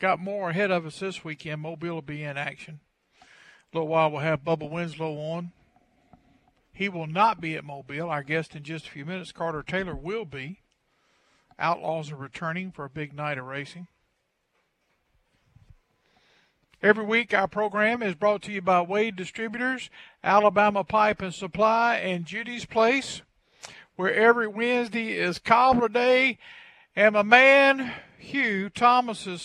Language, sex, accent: English, male, American